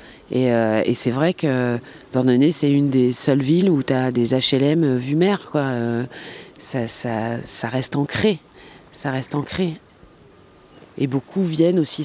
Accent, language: French, French